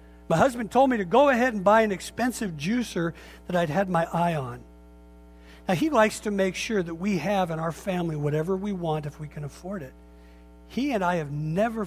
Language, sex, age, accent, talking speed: English, male, 50-69, American, 215 wpm